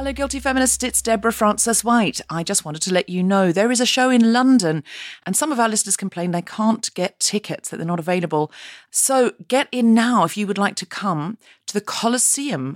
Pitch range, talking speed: 170-225 Hz, 220 wpm